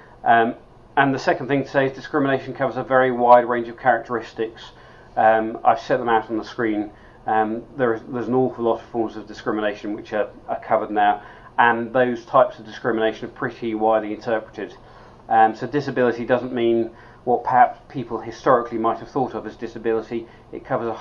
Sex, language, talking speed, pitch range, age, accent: male, English, 190 wpm, 110-120 Hz, 40-59, British